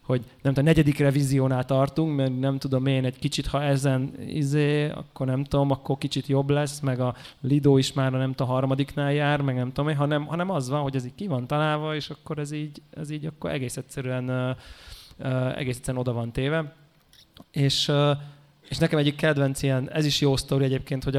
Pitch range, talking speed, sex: 130-145 Hz, 200 wpm, male